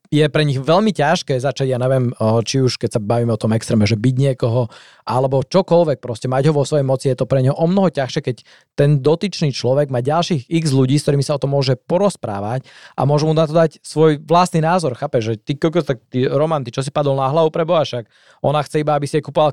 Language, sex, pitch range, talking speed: Slovak, male, 130-160 Hz, 245 wpm